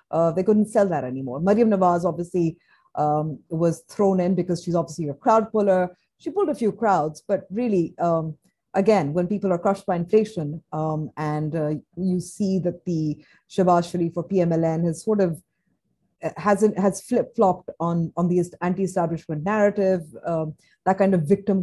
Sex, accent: female, Indian